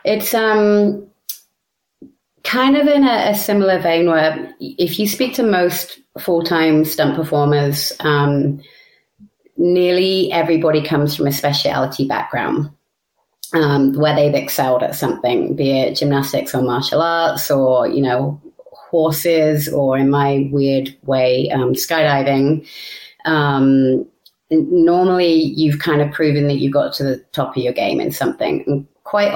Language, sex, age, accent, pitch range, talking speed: English, female, 30-49, British, 140-165 Hz, 135 wpm